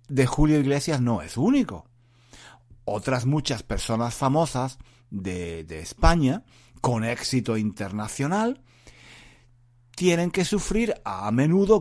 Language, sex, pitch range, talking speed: Spanish, male, 115-155 Hz, 105 wpm